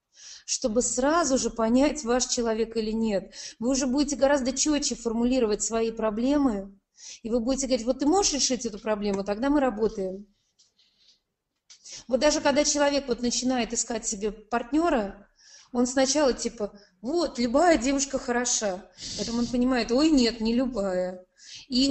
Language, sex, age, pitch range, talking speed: Russian, female, 20-39, 215-275 Hz, 145 wpm